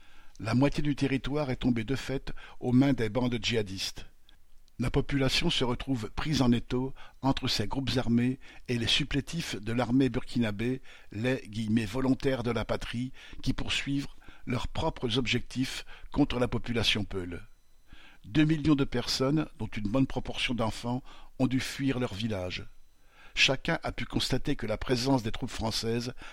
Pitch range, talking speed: 110-130 Hz, 160 wpm